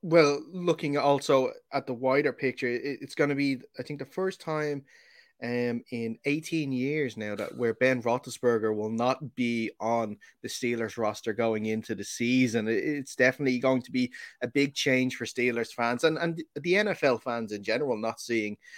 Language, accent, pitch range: English, Irish, 115-145 Hz